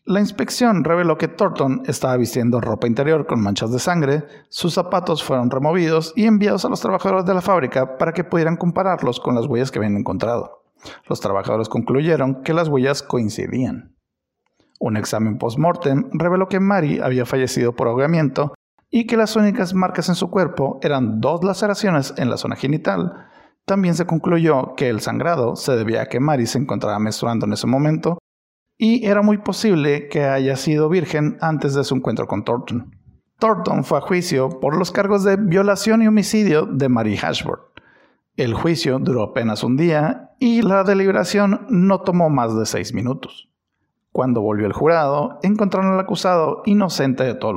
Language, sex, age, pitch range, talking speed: Spanish, male, 50-69, 130-190 Hz, 175 wpm